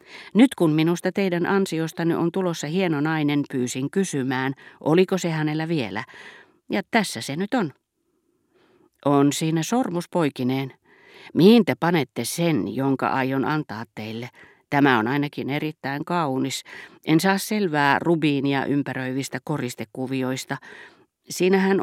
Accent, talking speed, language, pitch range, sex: native, 120 wpm, Finnish, 130-170 Hz, female